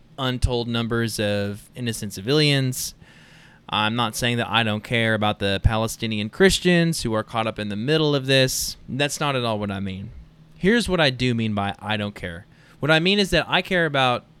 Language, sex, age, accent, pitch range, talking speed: English, male, 20-39, American, 110-135 Hz, 205 wpm